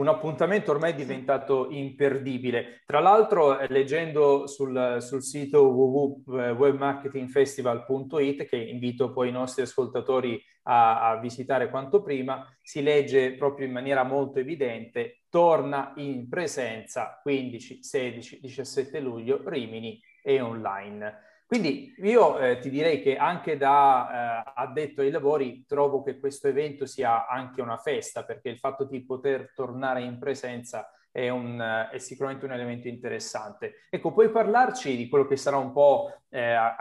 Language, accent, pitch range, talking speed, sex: Italian, native, 125-145 Hz, 140 wpm, male